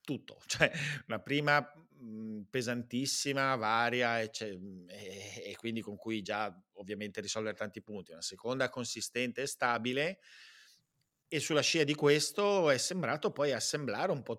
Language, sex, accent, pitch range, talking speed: Italian, male, native, 105-130 Hz, 140 wpm